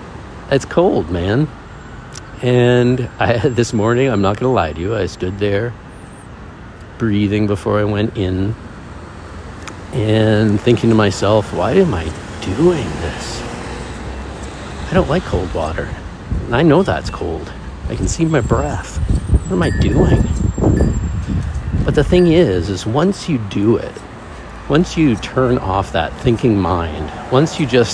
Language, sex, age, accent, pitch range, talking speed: English, male, 50-69, American, 90-120 Hz, 145 wpm